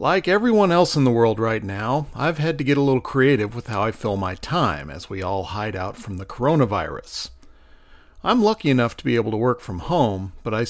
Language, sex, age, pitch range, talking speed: English, male, 40-59, 105-155 Hz, 230 wpm